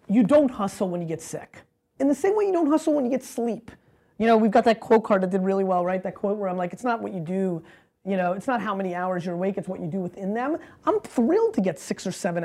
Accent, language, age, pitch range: American, English, 30-49, 190-260 Hz